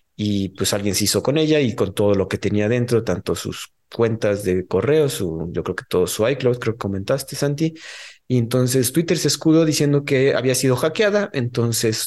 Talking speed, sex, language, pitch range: 205 wpm, male, Spanish, 110-155 Hz